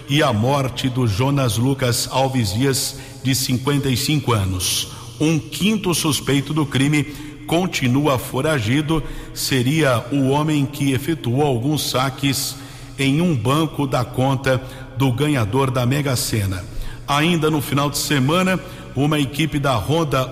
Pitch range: 125-145 Hz